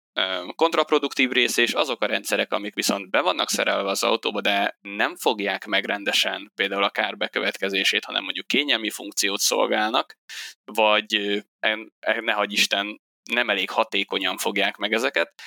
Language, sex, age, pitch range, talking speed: Hungarian, male, 20-39, 100-115 Hz, 130 wpm